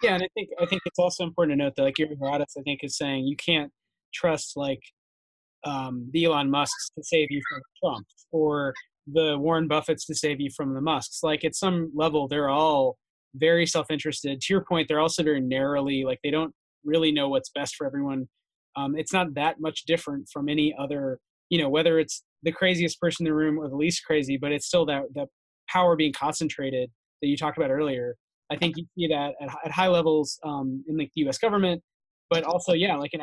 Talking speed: 220 wpm